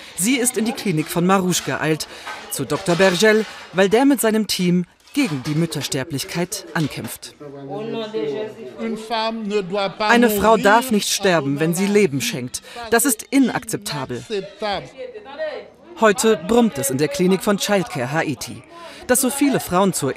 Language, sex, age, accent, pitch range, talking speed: German, female, 40-59, German, 160-240 Hz, 135 wpm